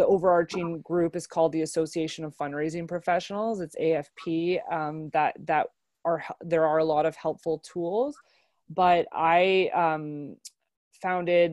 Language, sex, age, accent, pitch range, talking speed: English, female, 20-39, American, 155-175 Hz, 140 wpm